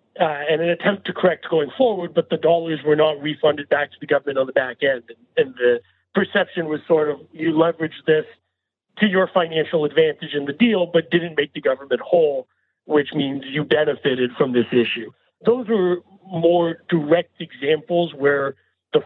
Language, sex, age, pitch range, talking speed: English, male, 40-59, 150-175 Hz, 185 wpm